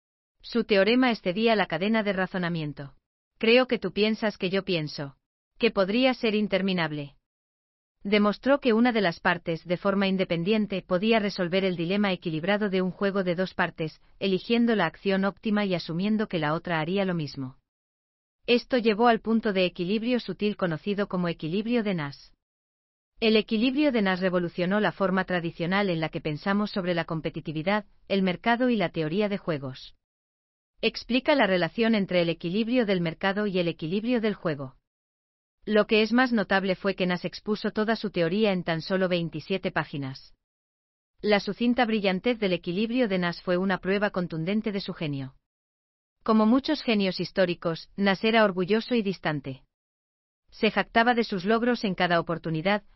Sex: female